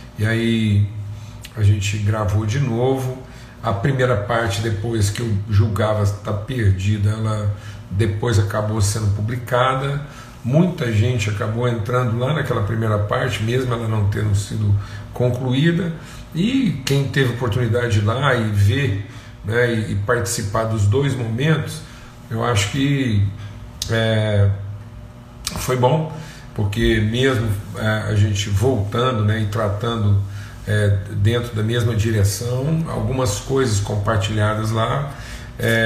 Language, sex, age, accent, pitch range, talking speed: Portuguese, male, 40-59, Brazilian, 105-125 Hz, 120 wpm